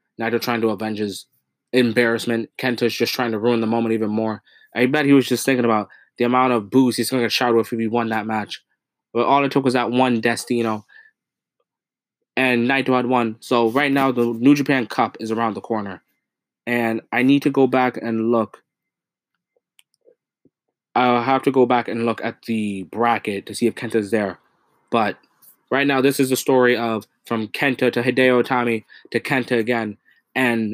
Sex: male